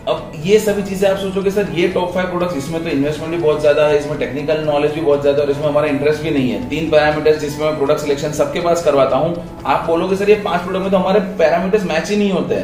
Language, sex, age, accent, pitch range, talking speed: Hindi, male, 30-49, native, 145-195 Hz, 50 wpm